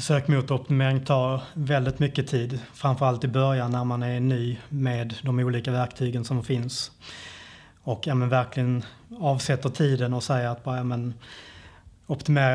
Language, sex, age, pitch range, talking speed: Swedish, male, 30-49, 120-135 Hz, 145 wpm